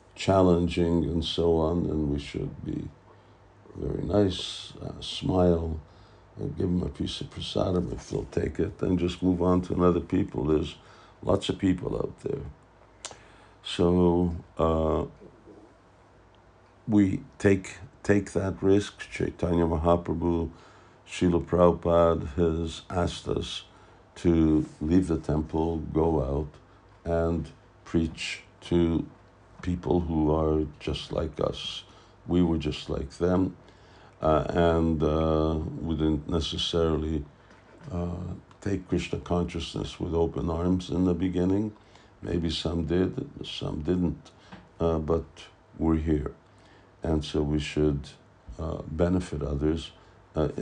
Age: 60-79